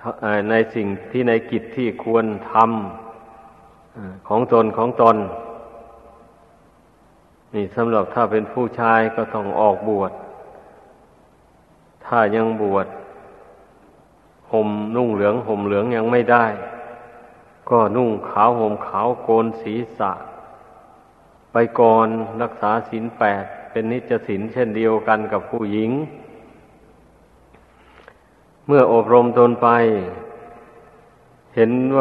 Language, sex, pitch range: Thai, male, 110-120 Hz